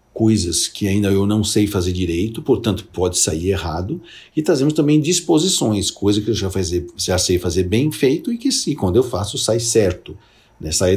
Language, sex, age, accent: Portuguese, male, 50-69, Brazilian